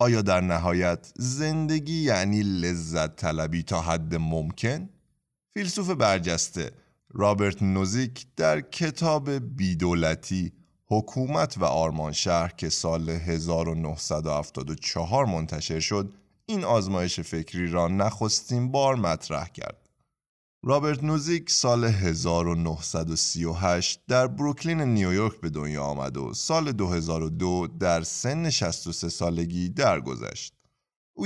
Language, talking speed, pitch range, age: Persian, 100 wpm, 85-130 Hz, 30-49